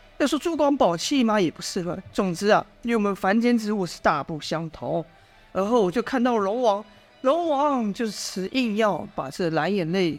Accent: native